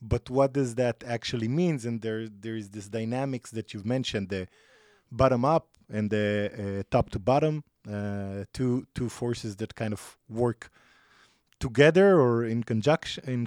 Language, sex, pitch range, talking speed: Hebrew, male, 105-130 Hz, 165 wpm